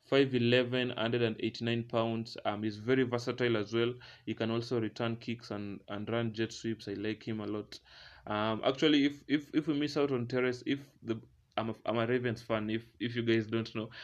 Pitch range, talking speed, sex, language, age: 110-120 Hz, 220 wpm, male, English, 20-39